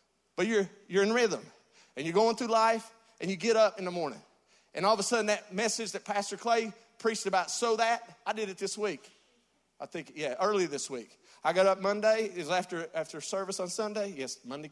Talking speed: 225 wpm